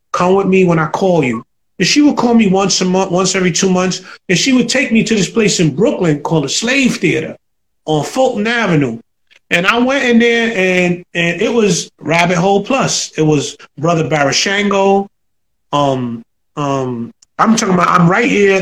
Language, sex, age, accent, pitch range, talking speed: English, male, 30-49, American, 160-220 Hz, 195 wpm